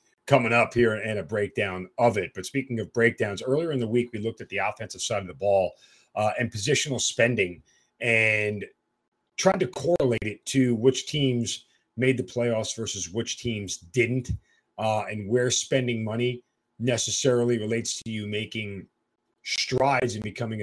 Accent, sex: American, male